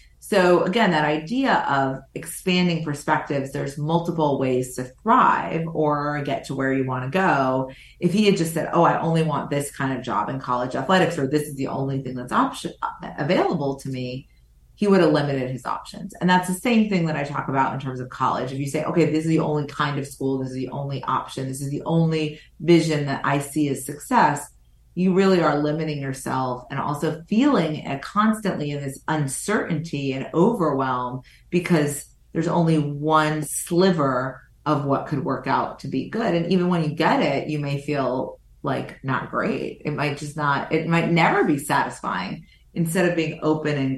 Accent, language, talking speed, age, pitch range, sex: American, English, 195 wpm, 30-49, 135-170 Hz, female